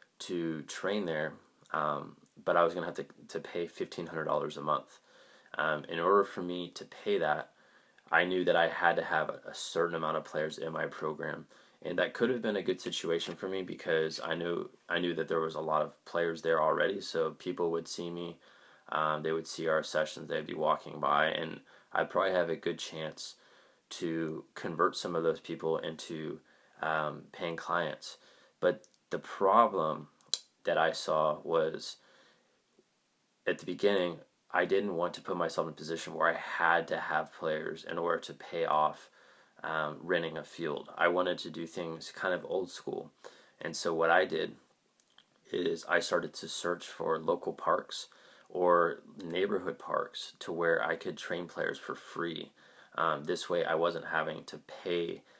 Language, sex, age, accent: English, male, 20-39, American